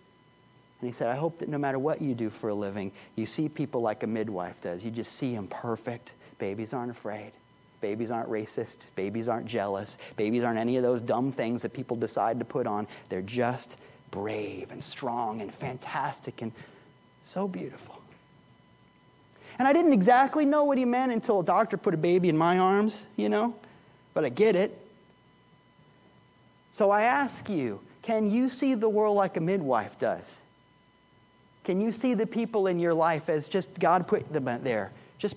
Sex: male